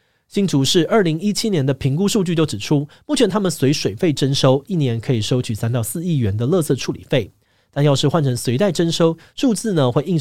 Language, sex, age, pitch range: Chinese, male, 30-49, 120-170 Hz